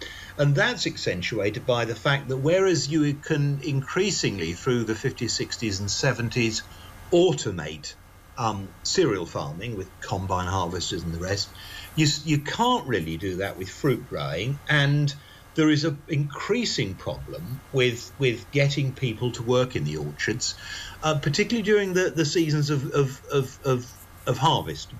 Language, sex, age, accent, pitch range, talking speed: English, male, 50-69, British, 100-155 Hz, 150 wpm